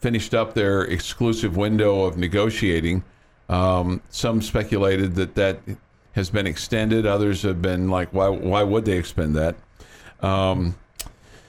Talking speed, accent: 135 wpm, American